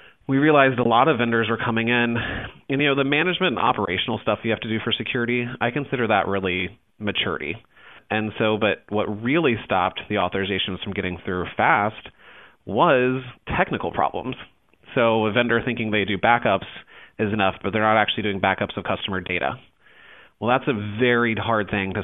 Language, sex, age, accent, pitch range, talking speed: English, male, 30-49, American, 95-120 Hz, 185 wpm